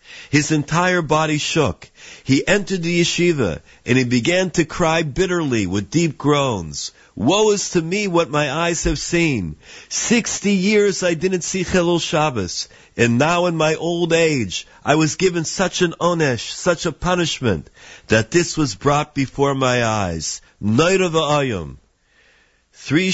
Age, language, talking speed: 50-69, English, 155 wpm